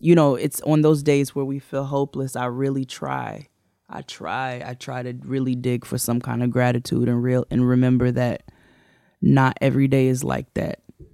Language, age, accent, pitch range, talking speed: English, 10-29, American, 120-135 Hz, 195 wpm